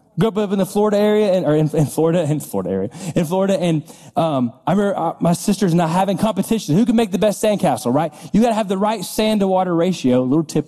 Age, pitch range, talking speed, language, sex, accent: 30-49, 155-220 Hz, 255 wpm, English, male, American